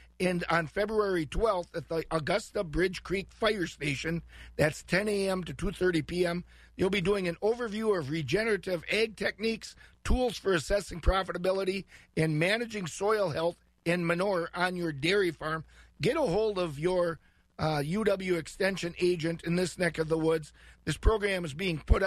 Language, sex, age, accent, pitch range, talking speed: English, male, 50-69, American, 160-195 Hz, 165 wpm